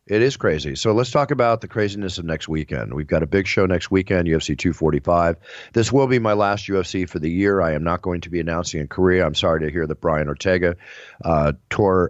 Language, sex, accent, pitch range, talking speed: English, male, American, 80-105 Hz, 240 wpm